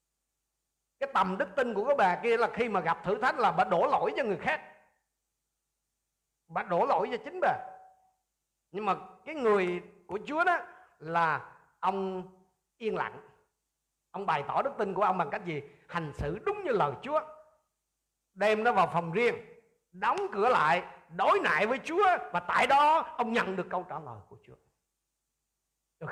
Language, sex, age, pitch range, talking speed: Vietnamese, male, 50-69, 135-205 Hz, 180 wpm